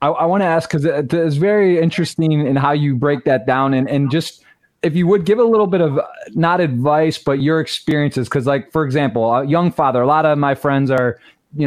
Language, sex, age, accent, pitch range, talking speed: English, male, 20-39, American, 140-170 Hz, 225 wpm